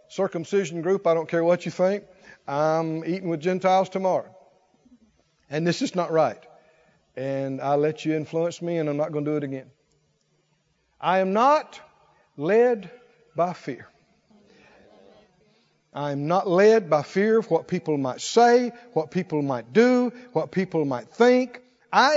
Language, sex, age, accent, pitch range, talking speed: English, male, 50-69, American, 160-245 Hz, 155 wpm